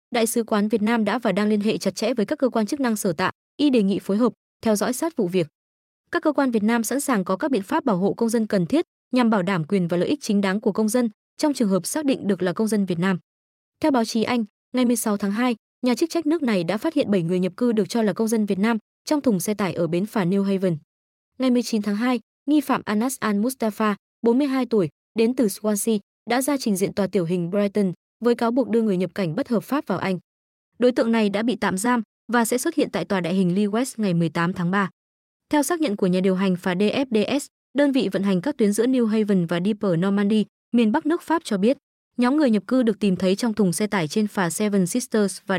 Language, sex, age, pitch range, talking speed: Vietnamese, female, 20-39, 195-250 Hz, 270 wpm